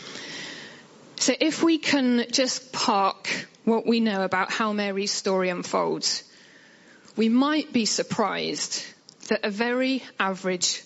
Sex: female